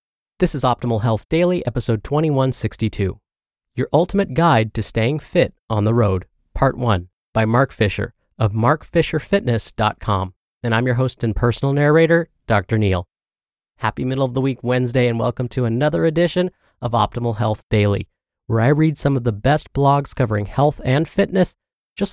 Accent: American